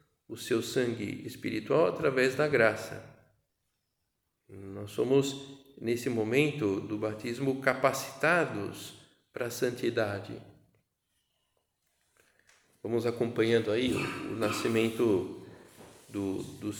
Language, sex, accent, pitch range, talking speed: Portuguese, male, Brazilian, 110-140 Hz, 90 wpm